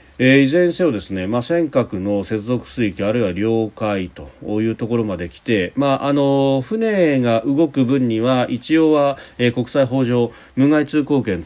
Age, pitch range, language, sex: 40-59, 95-130 Hz, Japanese, male